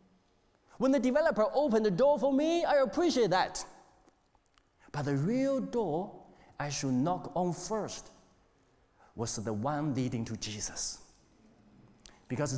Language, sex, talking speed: English, male, 130 wpm